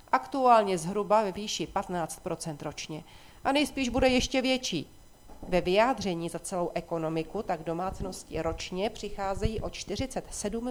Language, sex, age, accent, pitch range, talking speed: Czech, female, 40-59, native, 175-230 Hz, 125 wpm